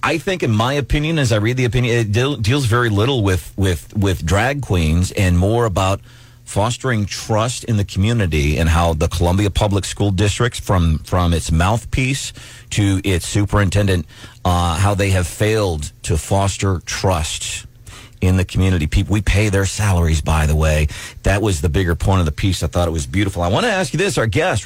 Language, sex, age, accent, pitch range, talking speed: English, male, 40-59, American, 95-120 Hz, 200 wpm